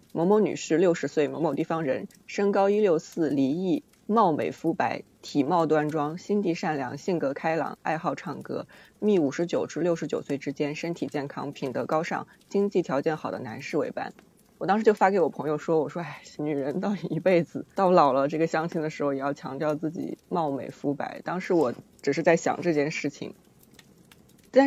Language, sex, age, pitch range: Chinese, female, 20-39, 150-200 Hz